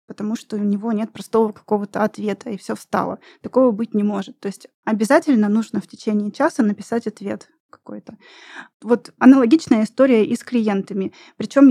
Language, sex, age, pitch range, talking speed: Russian, female, 20-39, 225-265 Hz, 165 wpm